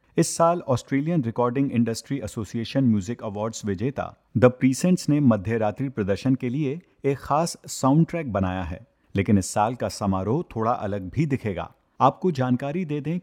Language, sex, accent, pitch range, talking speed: Hindi, male, native, 110-150 Hz, 155 wpm